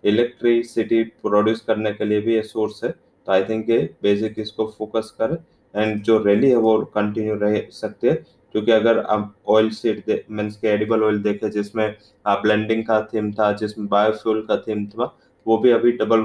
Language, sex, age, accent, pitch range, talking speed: English, male, 20-39, Indian, 105-115 Hz, 175 wpm